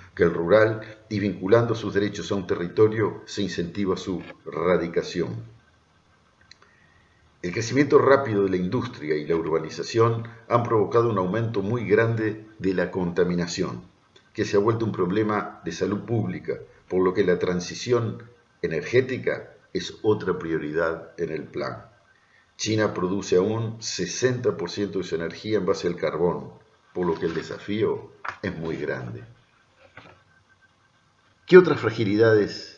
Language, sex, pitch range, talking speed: Spanish, male, 90-115 Hz, 135 wpm